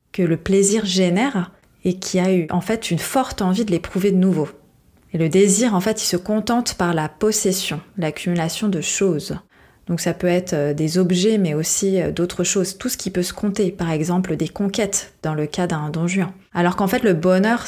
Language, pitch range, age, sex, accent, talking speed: French, 175-205 Hz, 20-39, female, French, 210 wpm